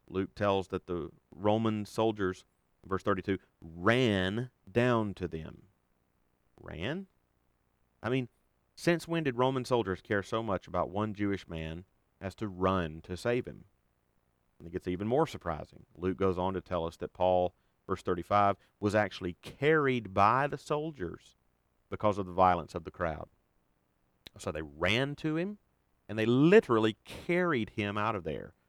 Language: English